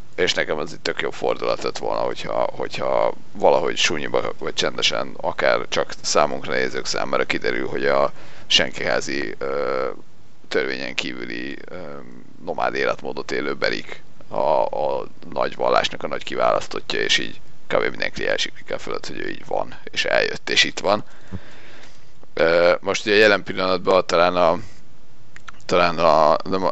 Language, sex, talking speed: Hungarian, male, 140 wpm